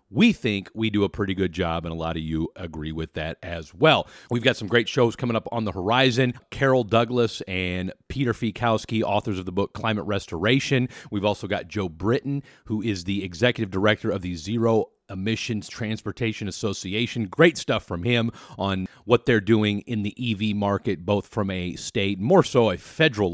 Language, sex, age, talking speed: English, male, 40-59, 195 wpm